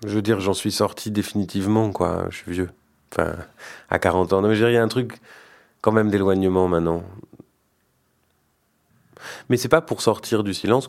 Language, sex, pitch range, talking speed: French, male, 85-105 Hz, 170 wpm